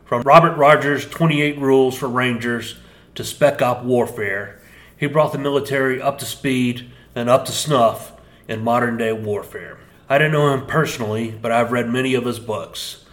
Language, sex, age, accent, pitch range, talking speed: English, male, 30-49, American, 115-135 Hz, 170 wpm